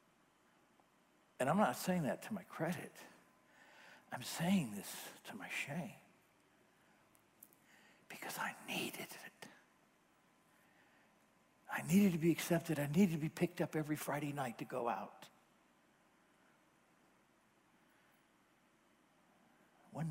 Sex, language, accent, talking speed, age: male, English, American, 105 wpm, 60-79